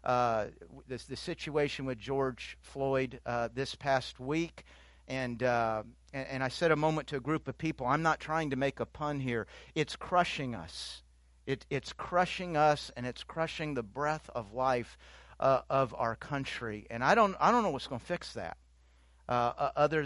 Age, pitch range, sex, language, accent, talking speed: 50-69, 115-140 Hz, male, English, American, 210 wpm